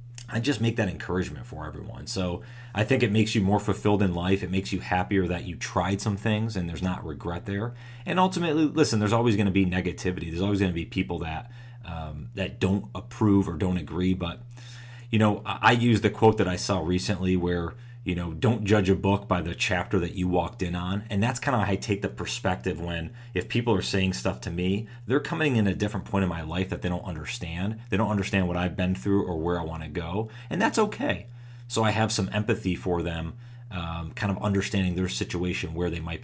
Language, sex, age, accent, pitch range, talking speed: English, male, 30-49, American, 90-115 Hz, 235 wpm